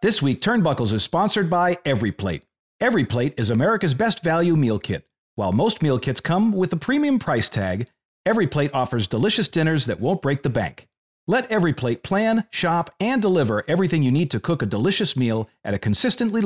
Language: English